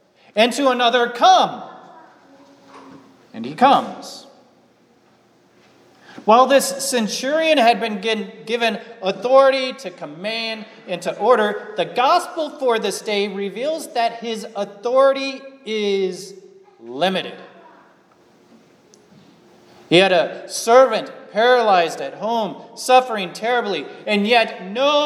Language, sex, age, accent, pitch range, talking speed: English, male, 30-49, American, 180-240 Hz, 100 wpm